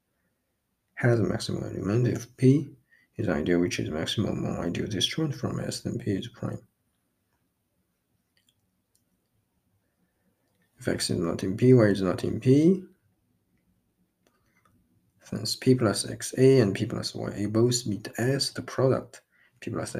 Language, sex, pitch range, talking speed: English, male, 90-115 Hz, 145 wpm